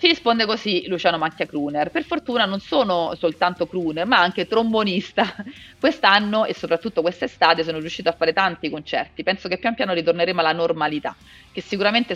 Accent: native